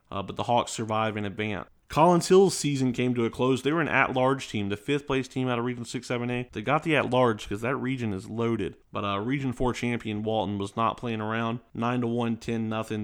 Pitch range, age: 110-130 Hz, 30-49